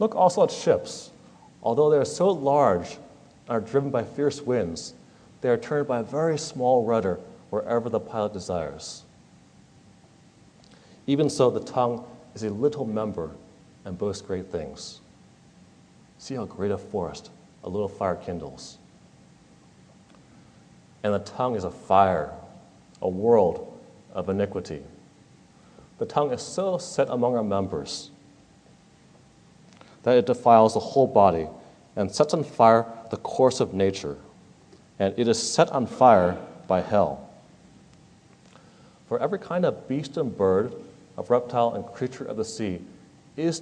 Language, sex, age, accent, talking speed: English, male, 40-59, American, 140 wpm